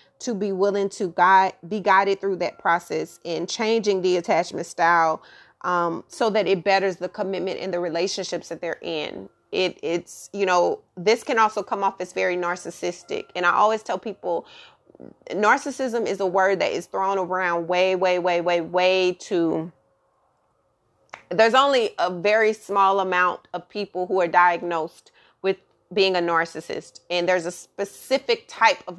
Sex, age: female, 30-49